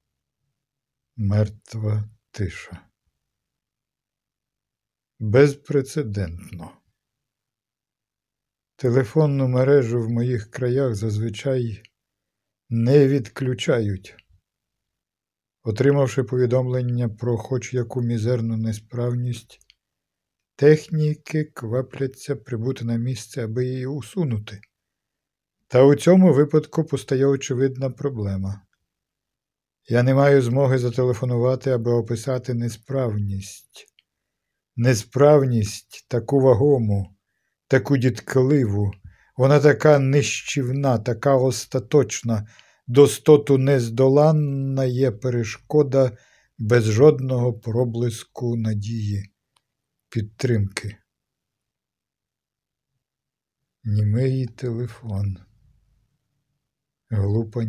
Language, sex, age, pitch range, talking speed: Ukrainian, male, 50-69, 110-135 Hz, 65 wpm